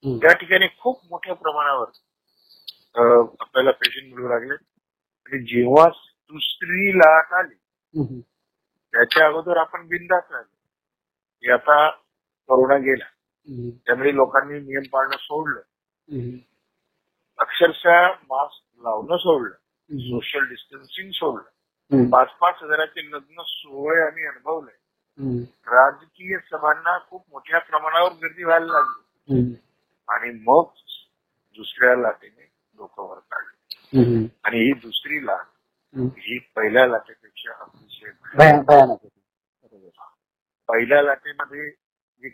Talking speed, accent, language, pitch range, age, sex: 90 wpm, native, Marathi, 125-165 Hz, 50-69, male